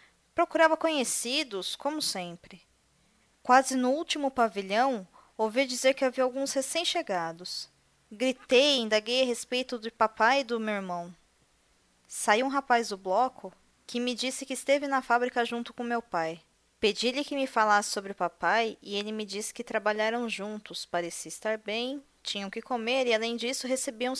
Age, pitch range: 20-39, 195-255 Hz